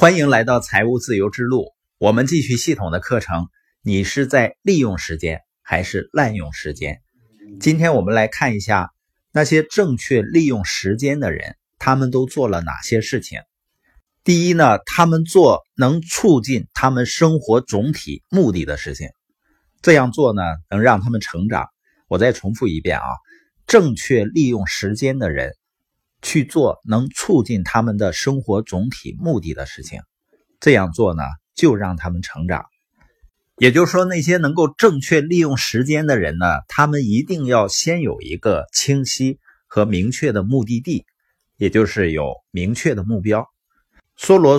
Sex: male